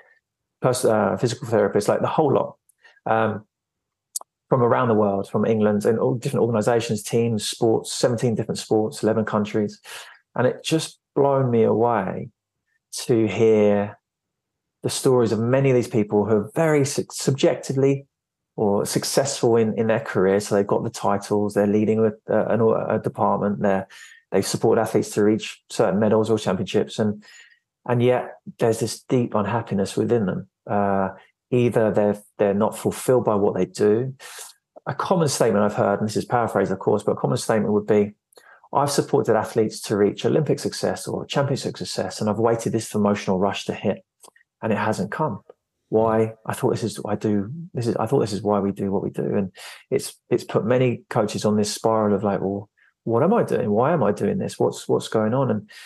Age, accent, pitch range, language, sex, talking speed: 20-39, British, 105-115 Hz, English, male, 190 wpm